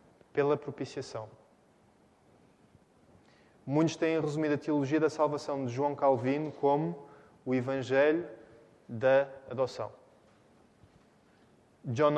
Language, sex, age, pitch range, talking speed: Portuguese, male, 20-39, 130-150 Hz, 90 wpm